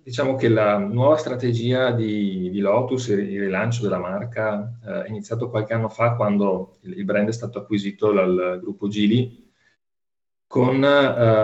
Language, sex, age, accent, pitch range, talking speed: Italian, male, 40-59, native, 100-120 Hz, 155 wpm